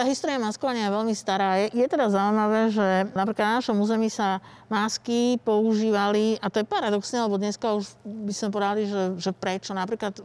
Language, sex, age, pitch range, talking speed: Slovak, female, 50-69, 205-230 Hz, 180 wpm